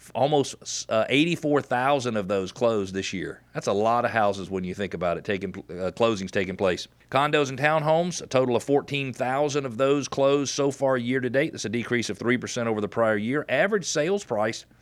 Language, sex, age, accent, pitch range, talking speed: English, male, 40-59, American, 115-140 Hz, 215 wpm